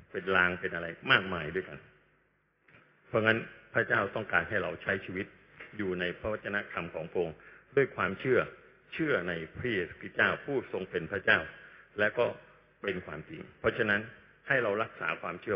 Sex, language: male, Thai